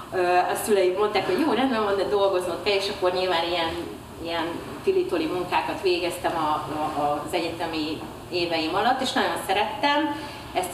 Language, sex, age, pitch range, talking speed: Hungarian, female, 30-49, 165-215 Hz, 150 wpm